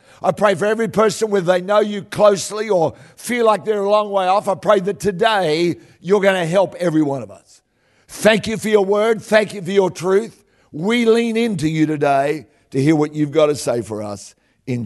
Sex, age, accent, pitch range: male, 60-79, Australian, 170-215 Hz